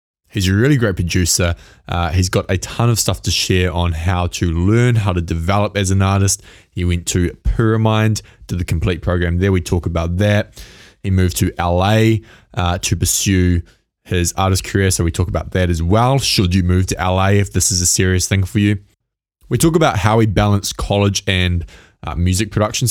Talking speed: 205 wpm